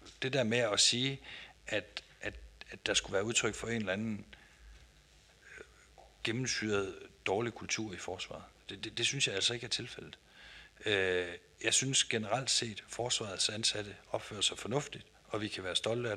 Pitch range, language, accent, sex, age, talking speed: 100-130 Hz, Danish, native, male, 60-79, 175 wpm